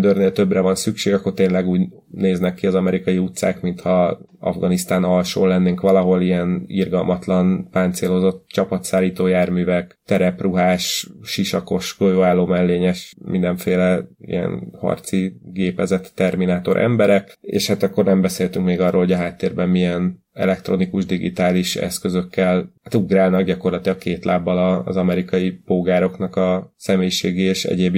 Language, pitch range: Hungarian, 90-100 Hz